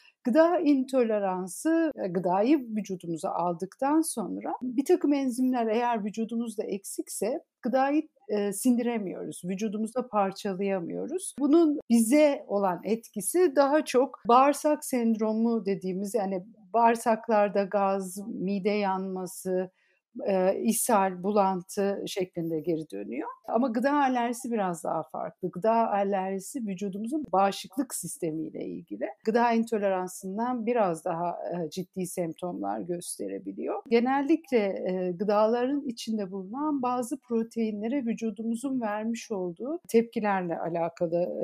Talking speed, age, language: 95 wpm, 60-79, Turkish